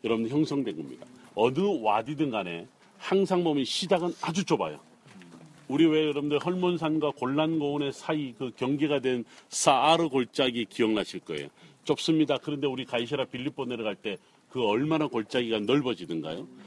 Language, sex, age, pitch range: Korean, male, 40-59, 115-150 Hz